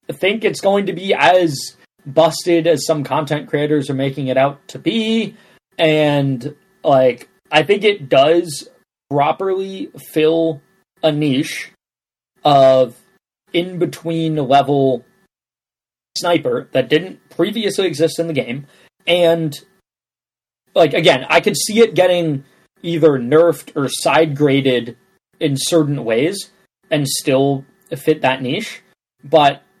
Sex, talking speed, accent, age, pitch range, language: male, 120 wpm, American, 20-39, 135-165 Hz, English